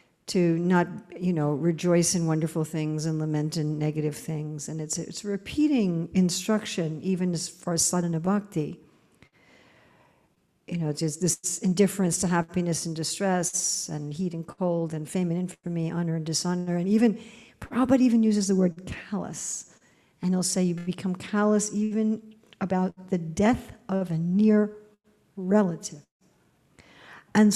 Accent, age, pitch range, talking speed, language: American, 60-79, 170-205 Hz, 150 wpm, English